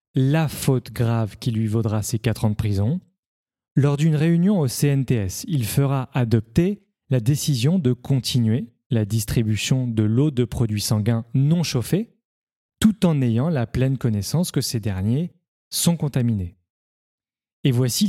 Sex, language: male, French